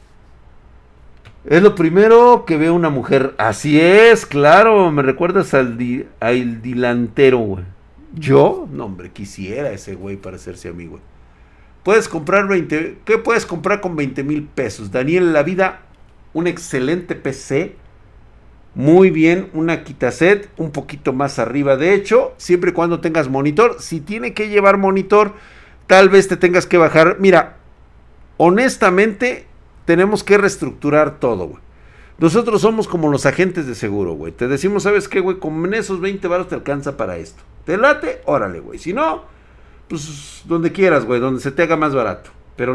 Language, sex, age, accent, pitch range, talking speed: Spanish, male, 50-69, Mexican, 125-190 Hz, 160 wpm